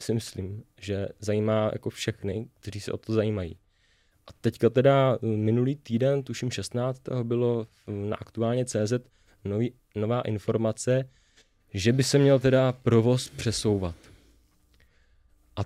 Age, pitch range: 20-39, 100-125 Hz